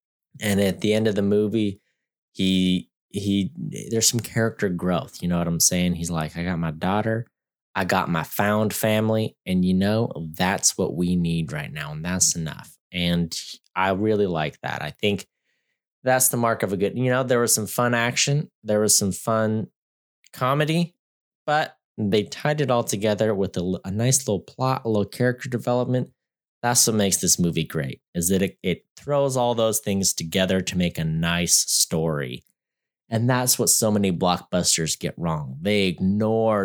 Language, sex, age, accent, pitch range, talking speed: English, male, 20-39, American, 90-115 Hz, 180 wpm